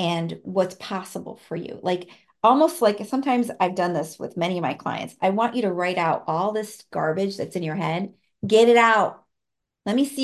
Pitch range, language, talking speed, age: 180-225 Hz, English, 210 wpm, 40-59